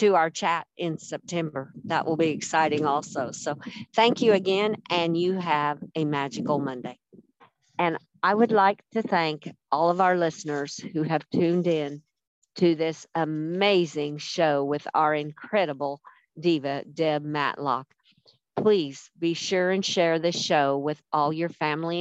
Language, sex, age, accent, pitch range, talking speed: English, female, 50-69, American, 145-185 Hz, 150 wpm